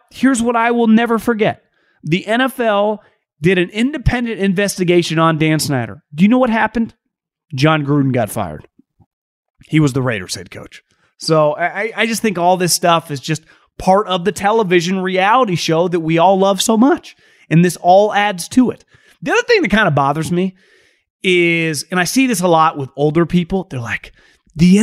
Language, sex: English, male